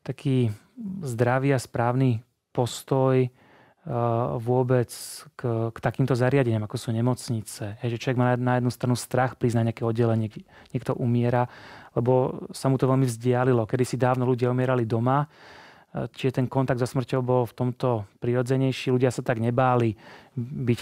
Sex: male